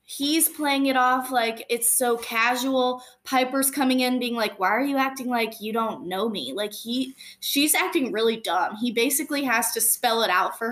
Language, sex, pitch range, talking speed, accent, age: English, female, 210-255 Hz, 200 wpm, American, 20-39